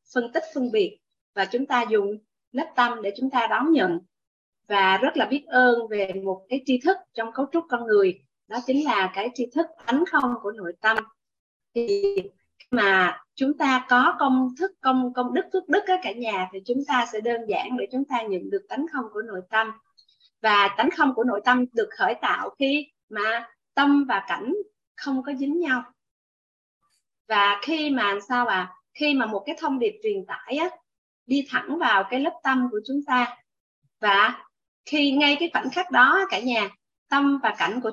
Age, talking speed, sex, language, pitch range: 20-39, 200 wpm, female, Vietnamese, 230-300 Hz